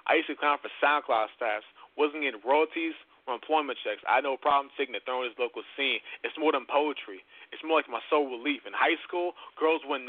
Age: 20-39